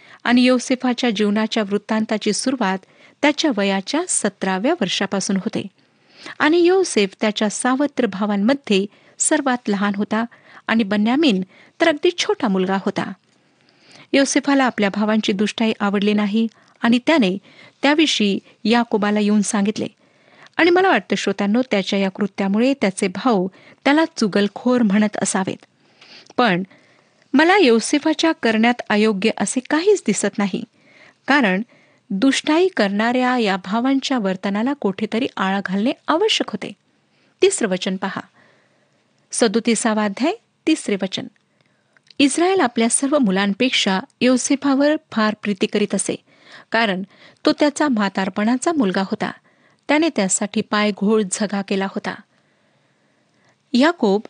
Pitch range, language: 205-275 Hz, Marathi